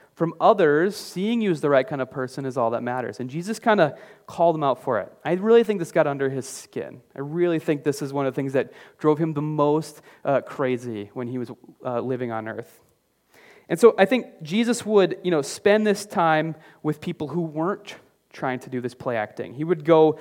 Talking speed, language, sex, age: 230 wpm, English, male, 30-49